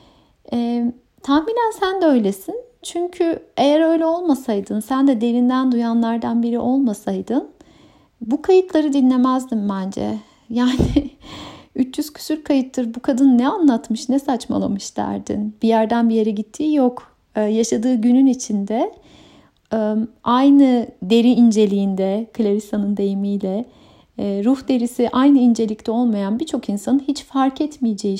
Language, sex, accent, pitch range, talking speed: Turkish, female, native, 220-285 Hz, 115 wpm